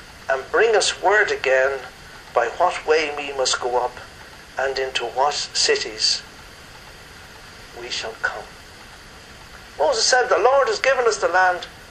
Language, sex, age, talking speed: English, male, 60-79, 140 wpm